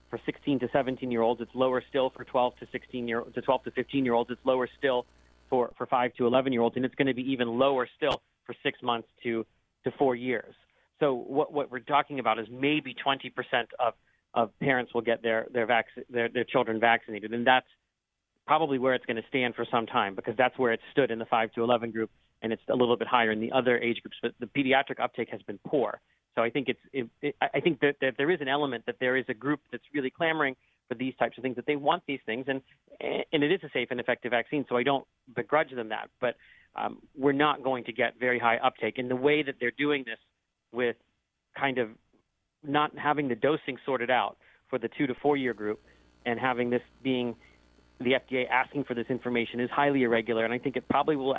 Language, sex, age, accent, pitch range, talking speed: English, male, 40-59, American, 115-135 Hz, 230 wpm